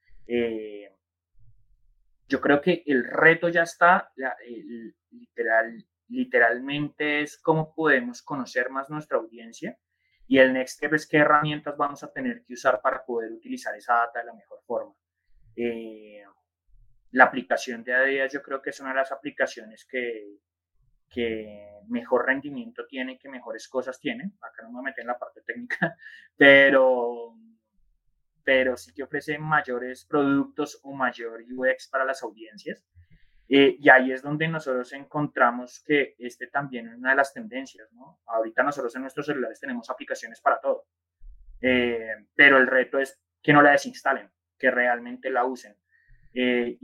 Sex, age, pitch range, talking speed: male, 20-39, 115-150 Hz, 155 wpm